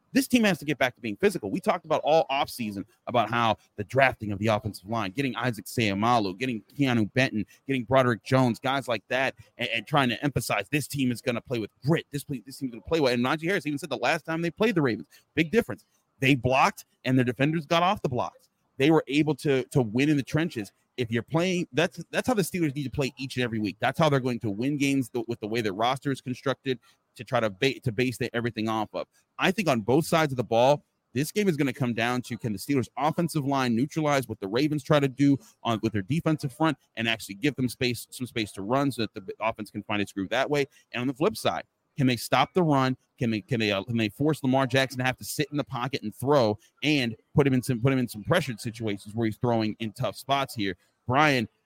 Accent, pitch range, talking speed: American, 115-145 Hz, 265 wpm